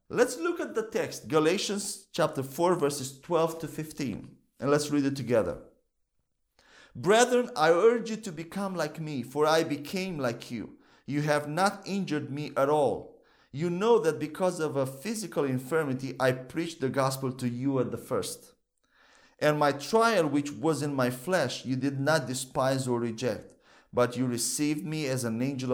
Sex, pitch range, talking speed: male, 135-170 Hz, 175 wpm